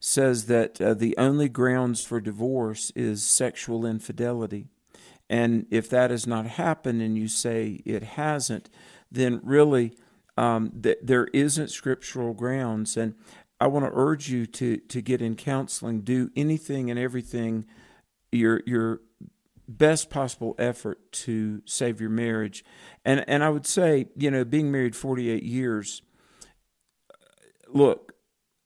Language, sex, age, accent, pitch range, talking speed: English, male, 50-69, American, 115-140 Hz, 140 wpm